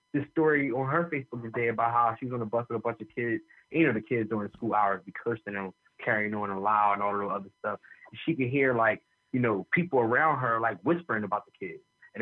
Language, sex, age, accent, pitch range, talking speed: English, male, 20-39, American, 115-170 Hz, 265 wpm